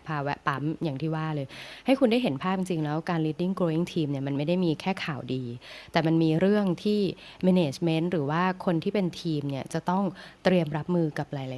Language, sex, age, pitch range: Thai, female, 20-39, 150-185 Hz